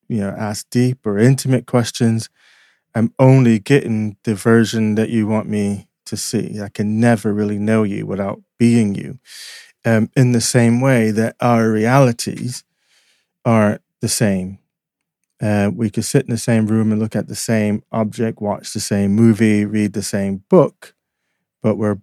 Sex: male